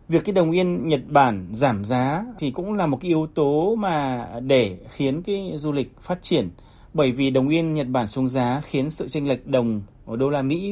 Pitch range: 120-165 Hz